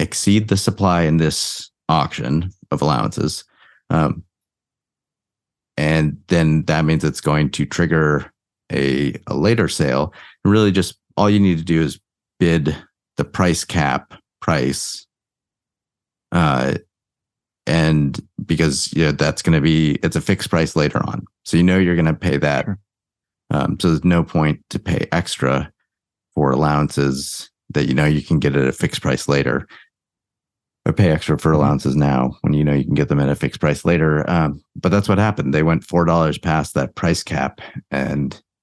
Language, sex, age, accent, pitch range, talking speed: English, male, 30-49, American, 75-90 Hz, 175 wpm